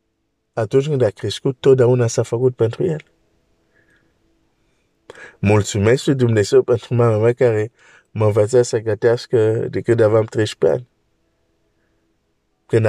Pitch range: 100-125 Hz